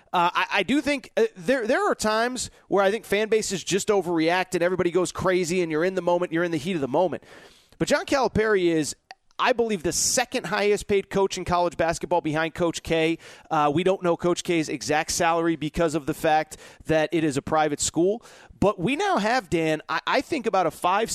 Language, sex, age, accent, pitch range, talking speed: English, male, 30-49, American, 155-200 Hz, 225 wpm